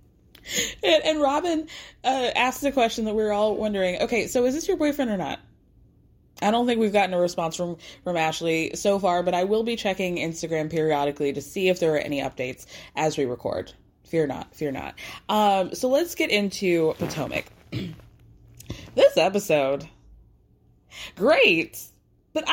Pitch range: 160-210 Hz